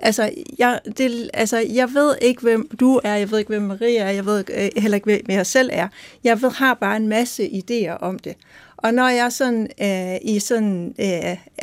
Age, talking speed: 60-79, 210 wpm